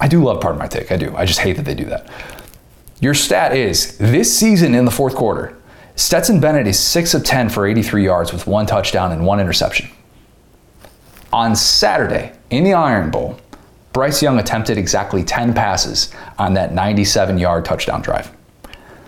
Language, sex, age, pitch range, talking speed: English, male, 30-49, 100-130 Hz, 180 wpm